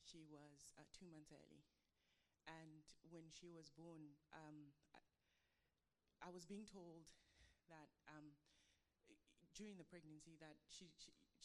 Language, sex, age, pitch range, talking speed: English, female, 20-39, 145-165 Hz, 135 wpm